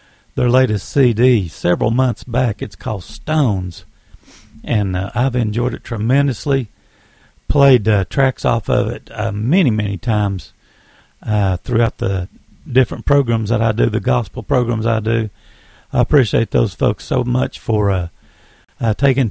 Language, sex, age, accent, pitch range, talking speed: English, male, 50-69, American, 105-135 Hz, 150 wpm